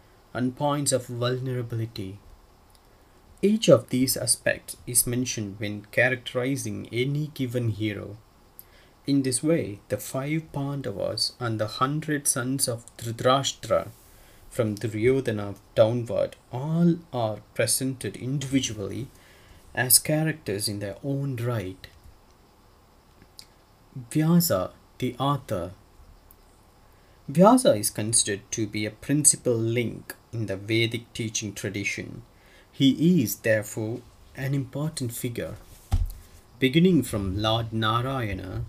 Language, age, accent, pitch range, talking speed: English, 30-49, Indian, 100-130 Hz, 100 wpm